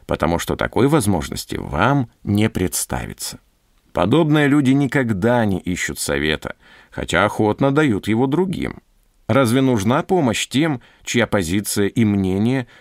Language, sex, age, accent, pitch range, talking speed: Russian, male, 50-69, native, 95-135 Hz, 120 wpm